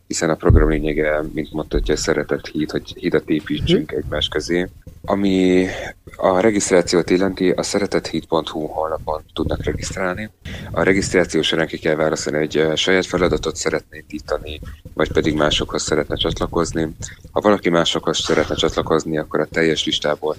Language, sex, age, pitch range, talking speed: Hungarian, male, 30-49, 75-85 Hz, 145 wpm